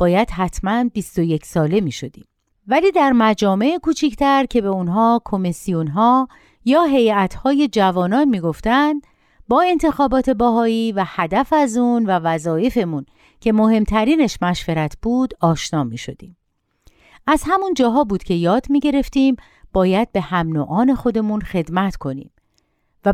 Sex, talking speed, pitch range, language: female, 130 wpm, 175-275 Hz, Persian